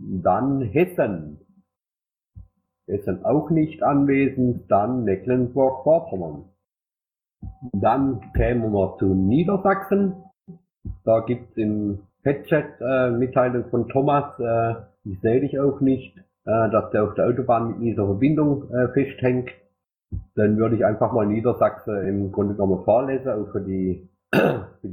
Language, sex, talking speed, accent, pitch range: German, male, 130 wpm, German, 100-130 Hz